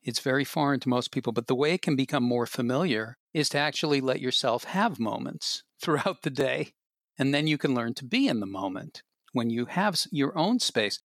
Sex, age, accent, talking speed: male, 50-69, American, 215 wpm